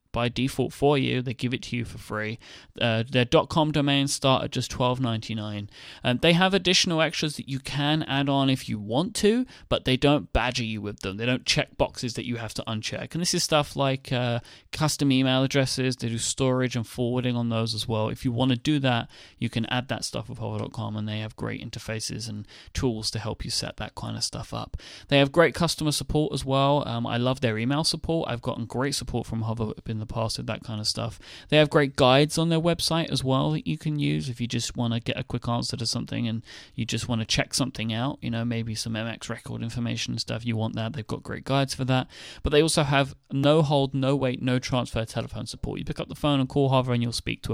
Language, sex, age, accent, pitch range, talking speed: English, male, 30-49, British, 115-145 Hz, 245 wpm